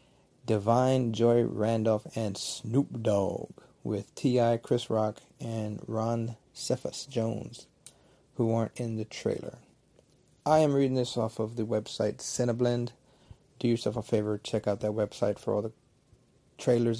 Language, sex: English, male